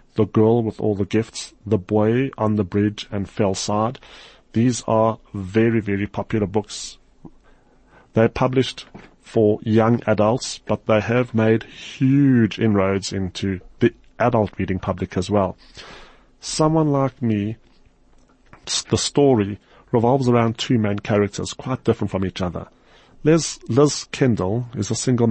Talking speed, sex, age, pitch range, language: 140 wpm, male, 30-49, 100-115 Hz, English